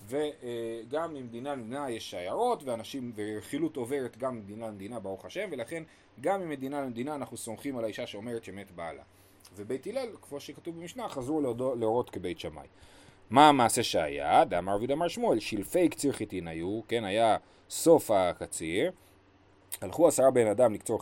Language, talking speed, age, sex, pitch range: Hebrew, 150 wpm, 30-49, male, 100-145 Hz